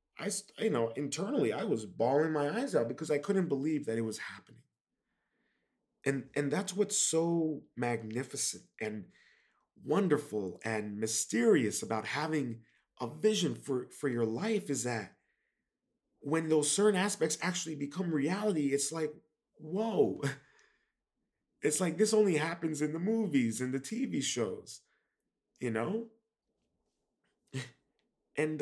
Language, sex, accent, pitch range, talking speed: English, male, American, 115-165 Hz, 130 wpm